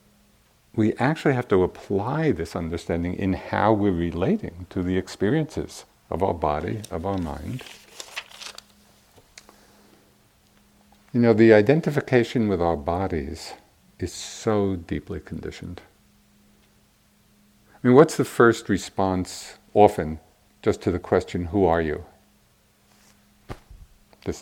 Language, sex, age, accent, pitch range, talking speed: English, male, 50-69, American, 90-110 Hz, 115 wpm